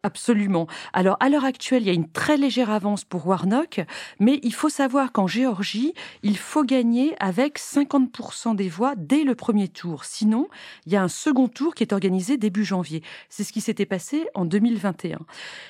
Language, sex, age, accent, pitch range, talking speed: French, female, 40-59, French, 190-260 Hz, 190 wpm